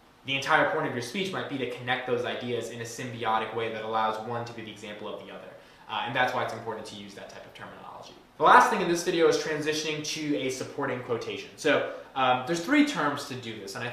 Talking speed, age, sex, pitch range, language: 260 wpm, 20-39, male, 115-160 Hz, English